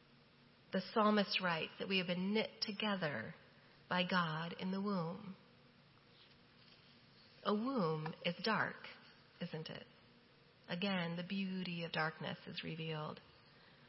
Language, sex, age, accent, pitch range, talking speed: English, female, 30-49, American, 170-220 Hz, 115 wpm